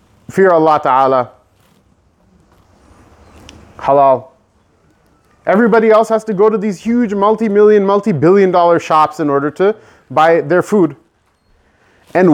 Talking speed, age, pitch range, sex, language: 110 wpm, 30-49, 160-215 Hz, male, English